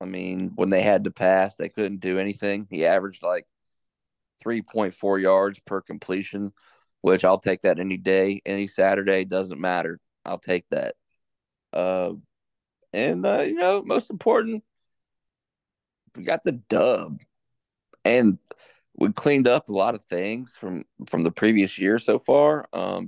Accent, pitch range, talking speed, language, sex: American, 95-110 Hz, 150 wpm, English, male